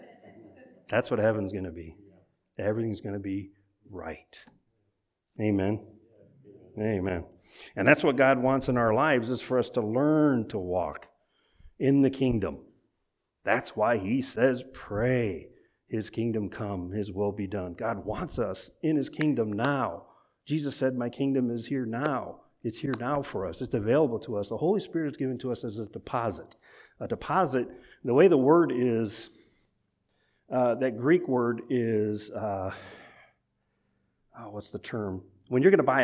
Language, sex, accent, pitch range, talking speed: English, male, American, 105-135 Hz, 160 wpm